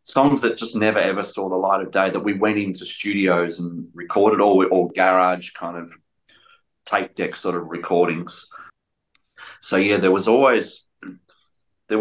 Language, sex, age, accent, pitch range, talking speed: English, male, 30-49, Australian, 90-110 Hz, 165 wpm